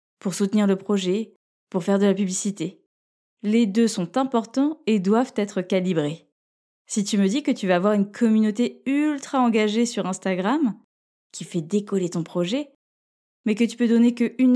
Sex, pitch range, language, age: female, 185-230 Hz, French, 20-39